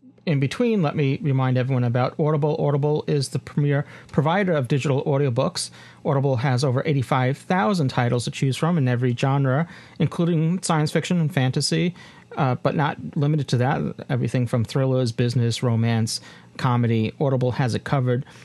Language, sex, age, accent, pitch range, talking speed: English, male, 40-59, American, 125-155 Hz, 155 wpm